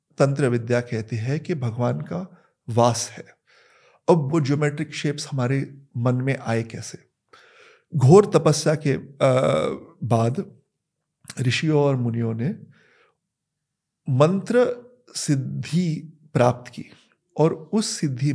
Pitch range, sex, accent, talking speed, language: 130-170 Hz, male, native, 110 wpm, Hindi